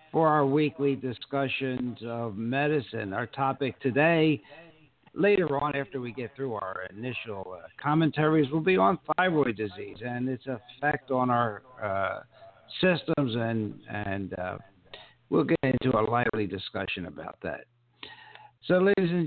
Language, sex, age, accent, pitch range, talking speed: English, male, 60-79, American, 110-140 Hz, 140 wpm